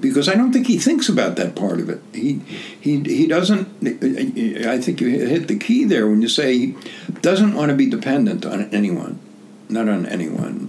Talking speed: 200 wpm